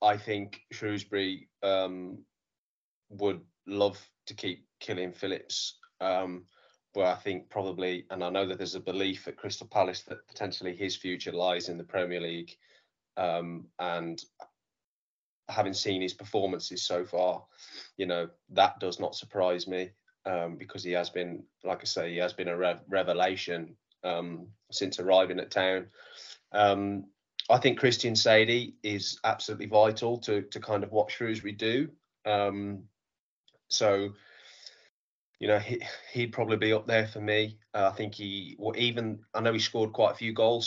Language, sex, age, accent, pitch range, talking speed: English, male, 20-39, British, 95-105 Hz, 160 wpm